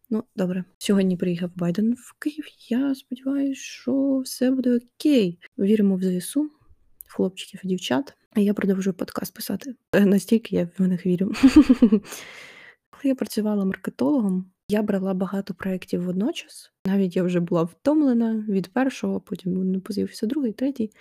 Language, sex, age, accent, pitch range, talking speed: Ukrainian, female, 20-39, native, 185-225 Hz, 135 wpm